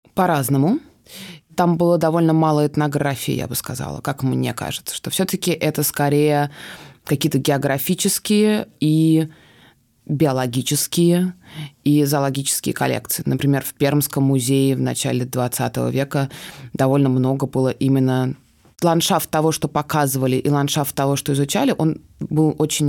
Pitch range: 140-165 Hz